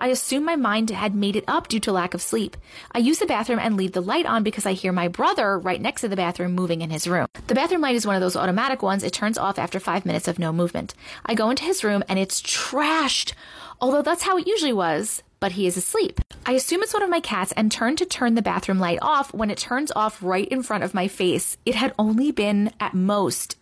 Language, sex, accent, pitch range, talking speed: English, female, American, 190-290 Hz, 260 wpm